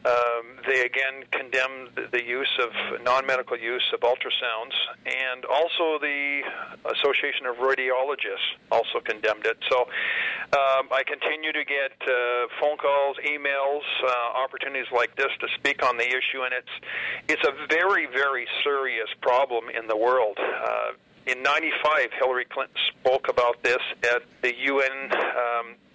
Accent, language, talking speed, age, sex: American, English, 145 wpm, 50-69, male